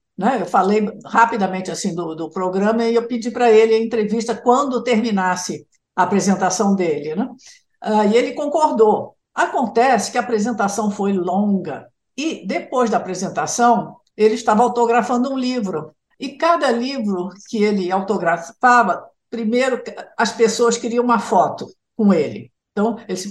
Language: Portuguese